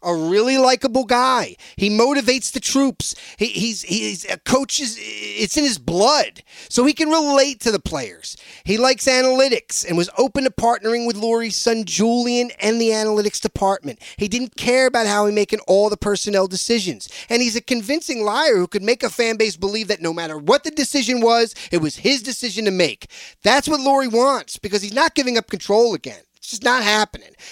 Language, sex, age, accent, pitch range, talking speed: English, male, 30-49, American, 200-260 Hz, 200 wpm